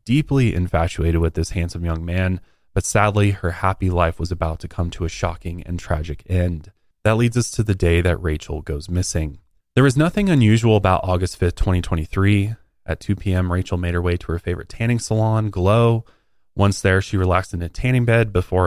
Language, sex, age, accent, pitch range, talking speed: English, male, 20-39, American, 85-105 Hz, 205 wpm